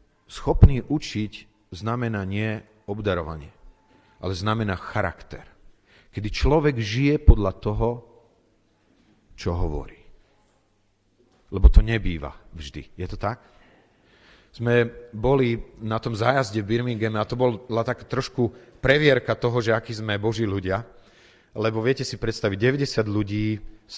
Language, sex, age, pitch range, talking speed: Slovak, male, 40-59, 105-125 Hz, 120 wpm